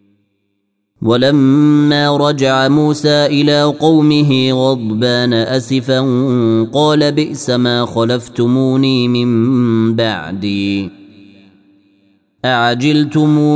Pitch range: 115-135 Hz